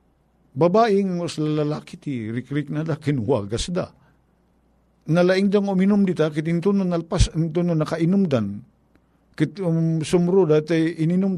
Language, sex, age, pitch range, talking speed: Filipino, male, 50-69, 125-160 Hz, 120 wpm